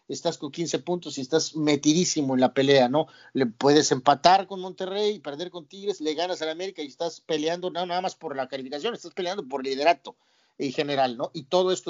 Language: Spanish